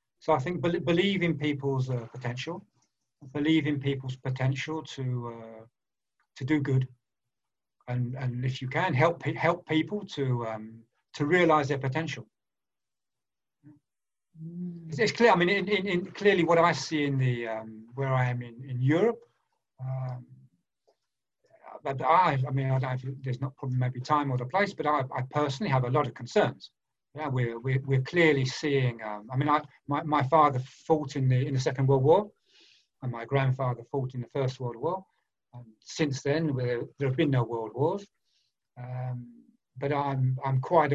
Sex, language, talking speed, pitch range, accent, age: male, English, 175 wpm, 125-155 Hz, British, 50-69